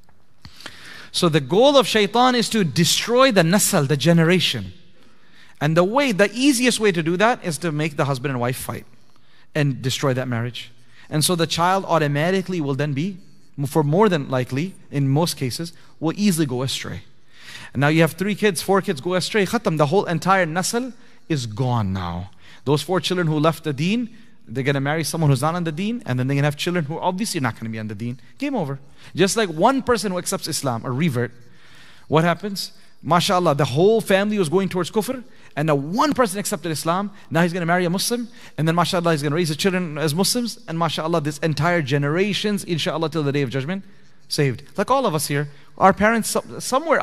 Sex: male